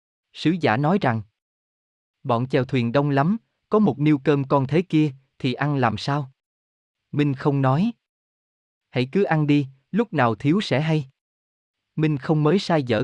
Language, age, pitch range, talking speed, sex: Vietnamese, 20-39, 115-160 Hz, 170 wpm, male